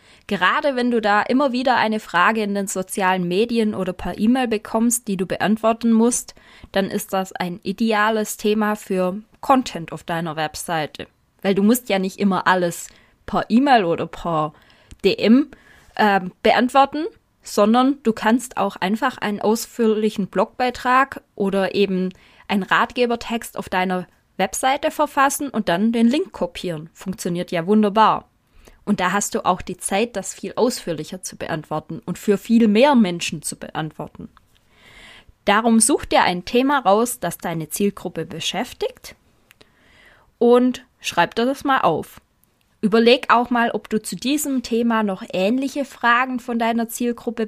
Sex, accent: female, German